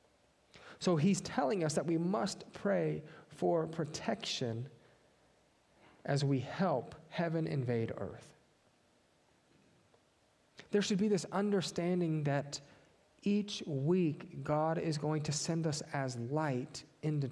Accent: American